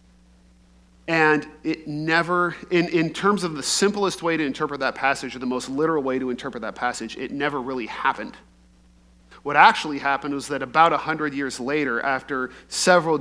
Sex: male